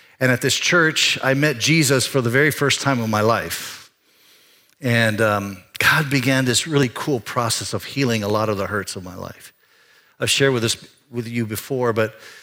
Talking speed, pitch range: 195 wpm, 110-130 Hz